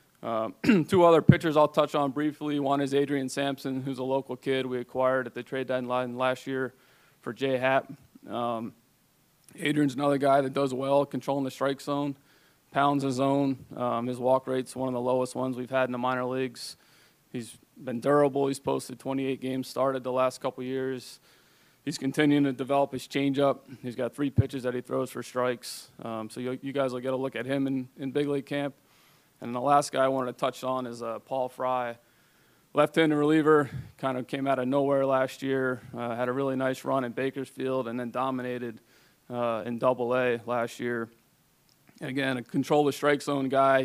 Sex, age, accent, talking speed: male, 20-39, American, 195 wpm